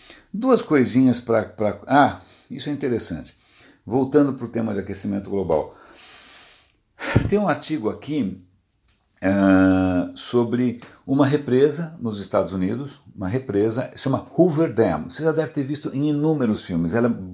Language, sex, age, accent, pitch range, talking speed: Portuguese, male, 60-79, Brazilian, 100-140 Hz, 140 wpm